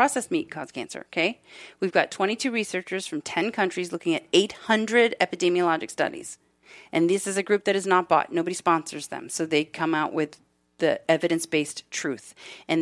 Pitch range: 165-210 Hz